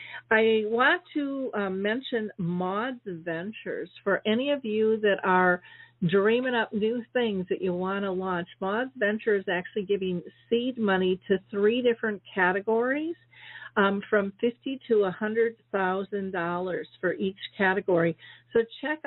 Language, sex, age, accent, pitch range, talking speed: English, female, 50-69, American, 185-220 Hz, 140 wpm